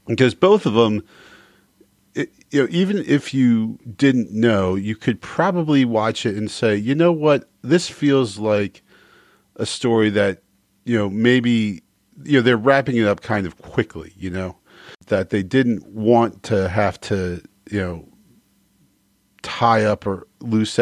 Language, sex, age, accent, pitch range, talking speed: English, male, 40-59, American, 95-115 Hz, 160 wpm